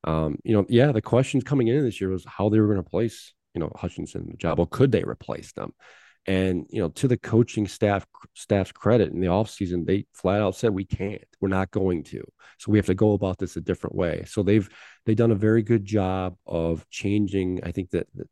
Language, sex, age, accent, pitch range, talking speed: English, male, 40-59, American, 90-105 Hz, 240 wpm